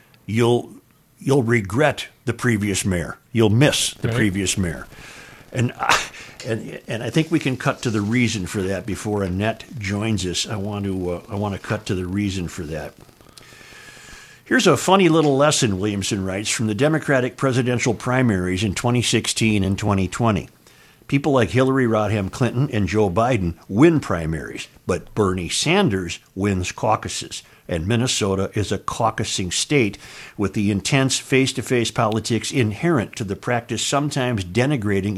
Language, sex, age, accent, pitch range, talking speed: English, male, 50-69, American, 100-135 Hz, 155 wpm